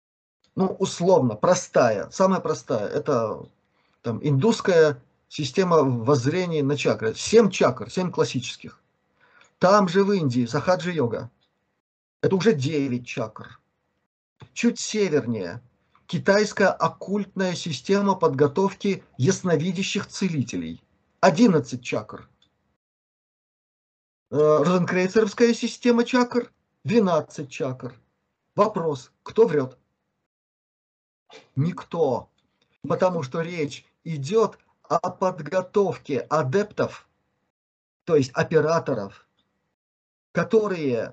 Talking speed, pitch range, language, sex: 80 wpm, 140-200 Hz, Russian, male